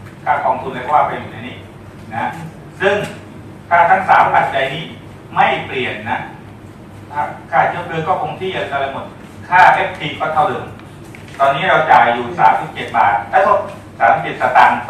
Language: Thai